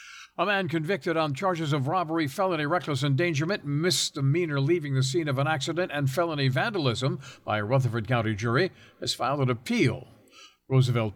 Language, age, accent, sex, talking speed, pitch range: English, 60-79, American, male, 160 wpm, 120-155 Hz